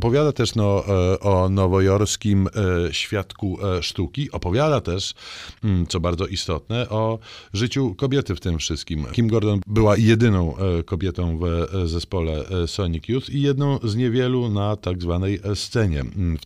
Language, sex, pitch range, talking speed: Polish, male, 90-115 Hz, 130 wpm